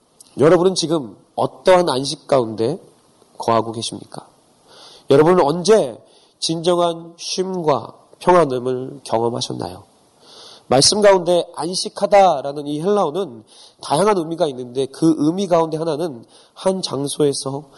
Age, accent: 30-49, native